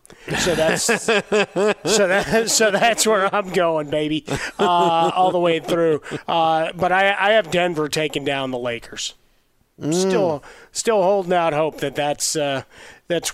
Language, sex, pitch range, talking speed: English, male, 140-175 Hz, 155 wpm